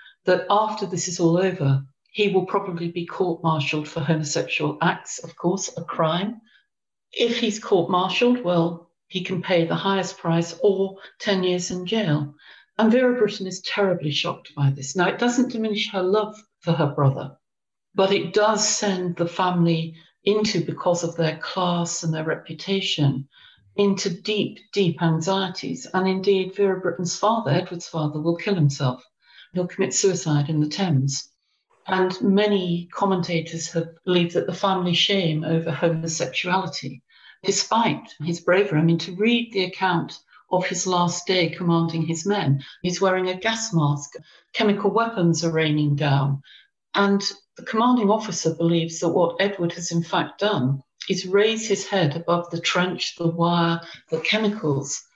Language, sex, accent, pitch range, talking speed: English, female, British, 165-200 Hz, 155 wpm